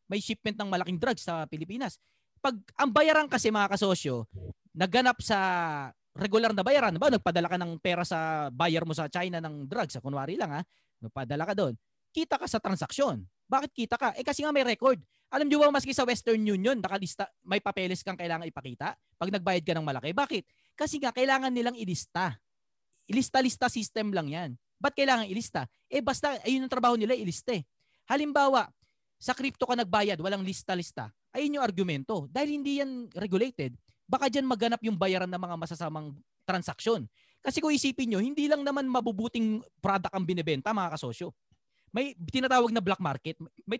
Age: 20-39